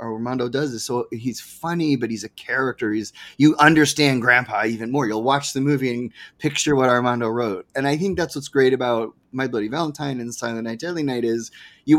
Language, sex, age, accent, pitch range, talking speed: English, male, 30-49, American, 120-145 Hz, 215 wpm